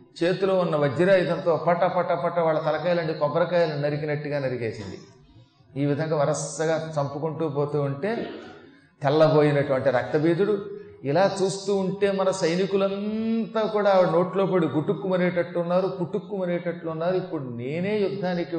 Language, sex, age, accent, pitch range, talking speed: Telugu, male, 30-49, native, 145-185 Hz, 105 wpm